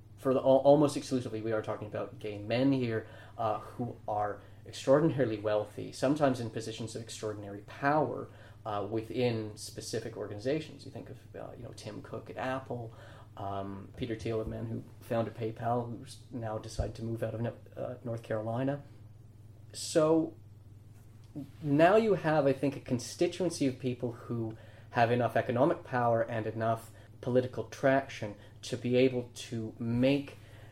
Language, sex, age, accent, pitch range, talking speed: English, male, 30-49, American, 110-125 Hz, 150 wpm